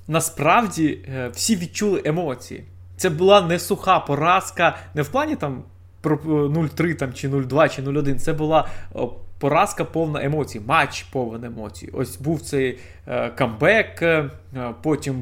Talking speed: 125 wpm